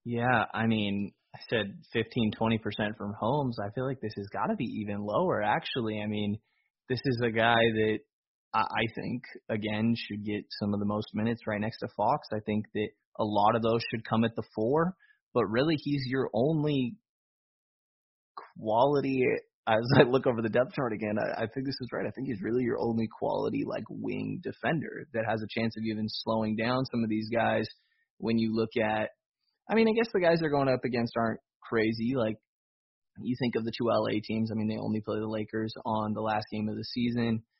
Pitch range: 110-125 Hz